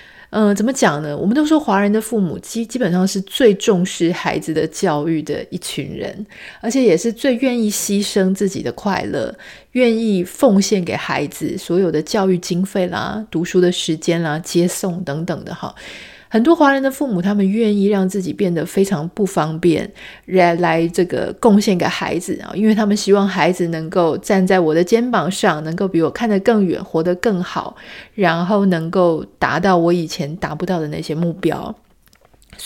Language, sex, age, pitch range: Chinese, female, 30-49, 170-215 Hz